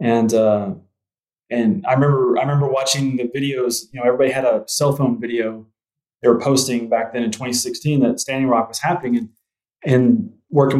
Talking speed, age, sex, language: 185 wpm, 20-39, male, English